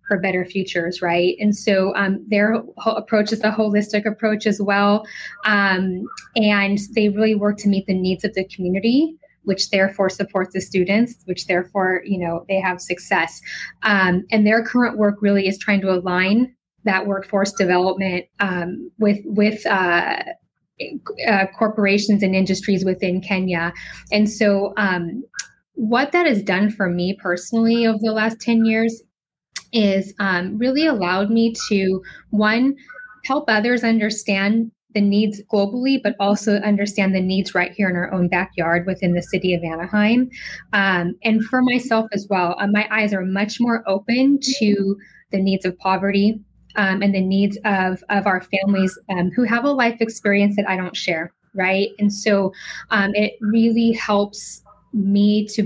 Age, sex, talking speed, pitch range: 10-29, female, 165 wpm, 190-220 Hz